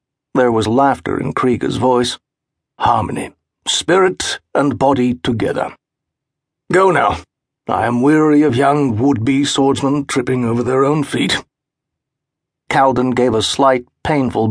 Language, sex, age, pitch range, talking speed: English, male, 50-69, 115-140 Hz, 125 wpm